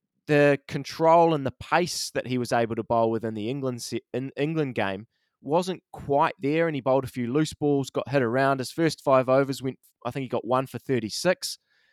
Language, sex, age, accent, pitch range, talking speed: English, male, 20-39, Australian, 125-150 Hz, 215 wpm